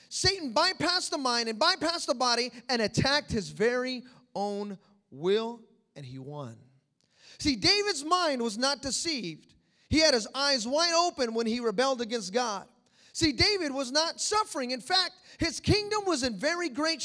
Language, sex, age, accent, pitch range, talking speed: English, male, 30-49, American, 225-325 Hz, 165 wpm